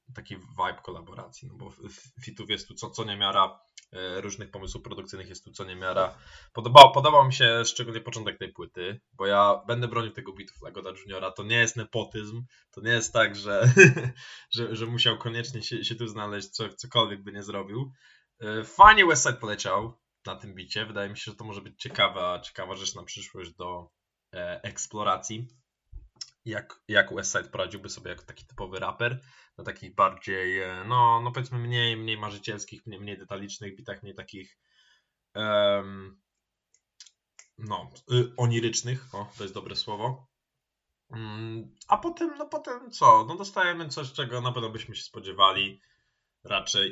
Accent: native